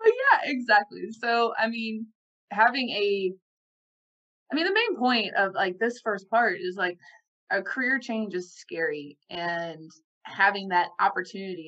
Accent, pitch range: American, 195-255 Hz